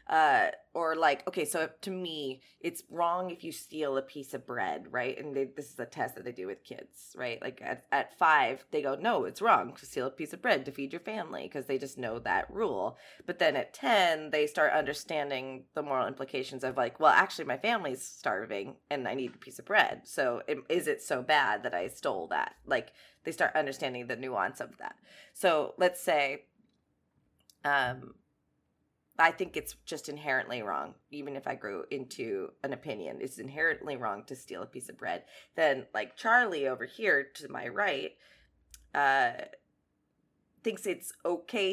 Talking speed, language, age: 190 wpm, English, 20-39